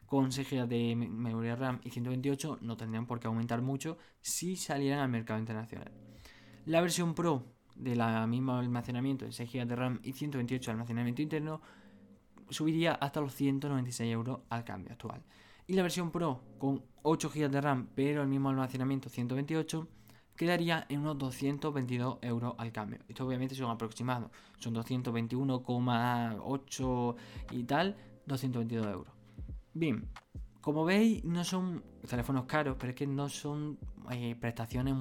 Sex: male